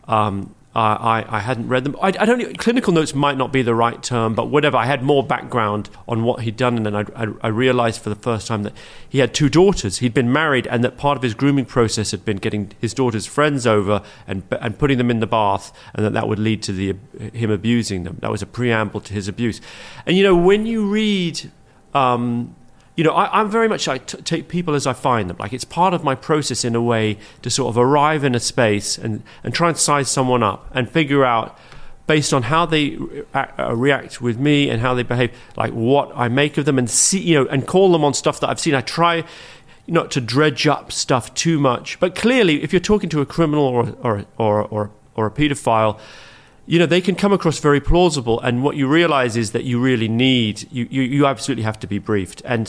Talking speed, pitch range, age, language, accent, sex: 240 wpm, 115-150 Hz, 40-59, English, British, male